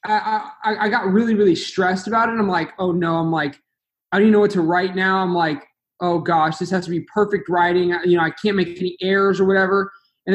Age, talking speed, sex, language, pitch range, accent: 20-39, 255 wpm, male, English, 170-210 Hz, American